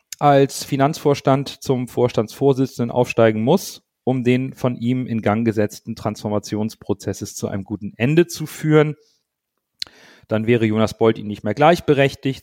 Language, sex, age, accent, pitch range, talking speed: German, male, 40-59, German, 110-135 Hz, 135 wpm